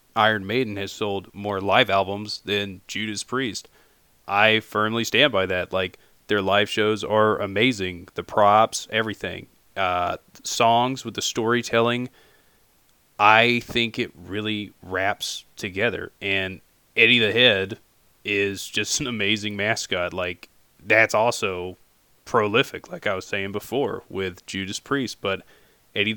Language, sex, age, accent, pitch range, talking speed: English, male, 20-39, American, 95-110 Hz, 135 wpm